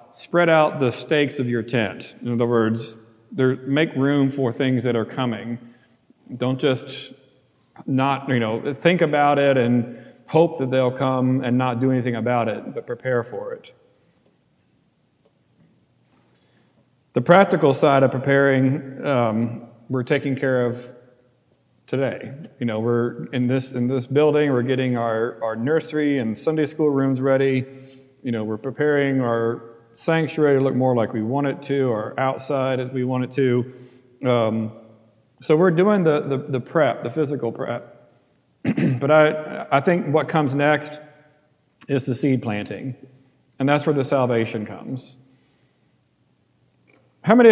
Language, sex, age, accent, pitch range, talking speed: English, male, 40-59, American, 120-145 Hz, 150 wpm